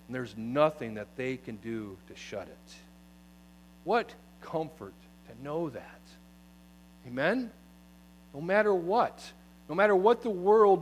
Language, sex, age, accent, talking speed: English, male, 40-59, American, 135 wpm